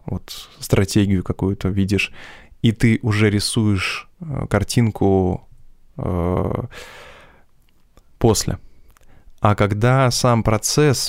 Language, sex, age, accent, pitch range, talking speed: Russian, male, 20-39, native, 100-120 Hz, 75 wpm